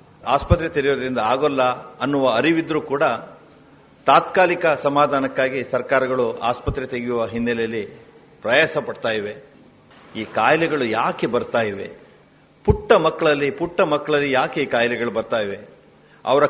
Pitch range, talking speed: 125-155 Hz, 100 wpm